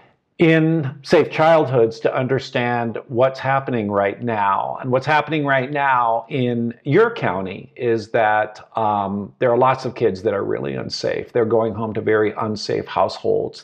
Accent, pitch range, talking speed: American, 115-150 Hz, 160 wpm